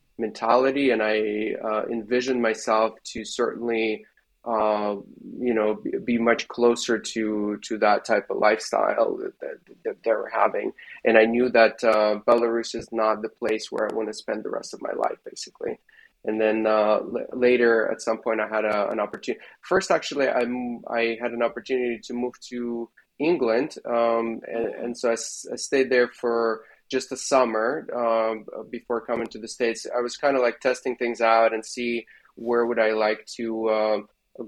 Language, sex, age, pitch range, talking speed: English, male, 20-39, 110-130 Hz, 185 wpm